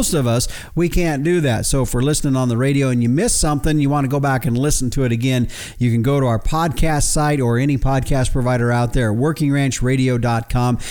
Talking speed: 225 wpm